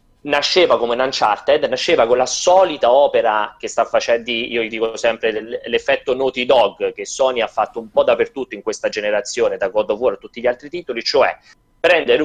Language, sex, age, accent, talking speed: Italian, male, 30-49, native, 190 wpm